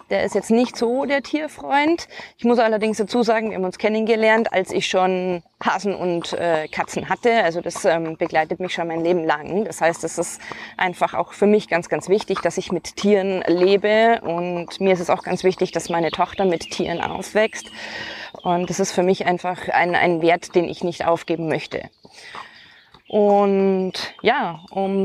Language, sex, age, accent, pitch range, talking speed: German, female, 20-39, German, 175-210 Hz, 190 wpm